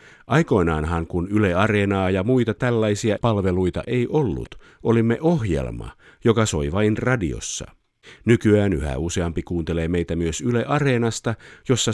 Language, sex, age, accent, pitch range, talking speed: Finnish, male, 50-69, native, 85-115 Hz, 125 wpm